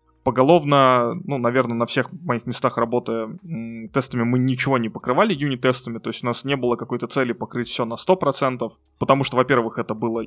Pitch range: 115-130 Hz